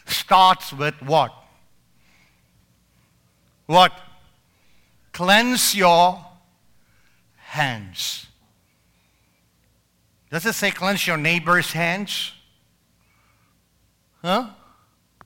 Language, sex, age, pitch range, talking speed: English, male, 50-69, 125-195 Hz, 60 wpm